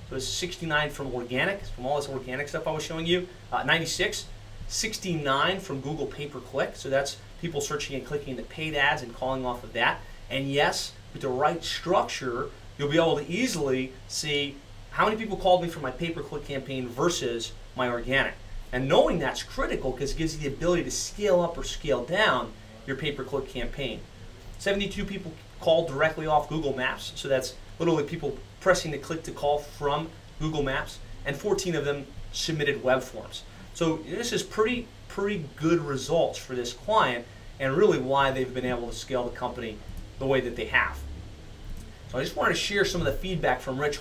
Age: 30-49